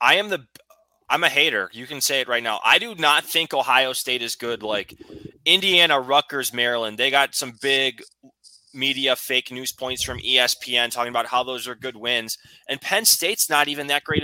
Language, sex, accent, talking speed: English, male, American, 200 wpm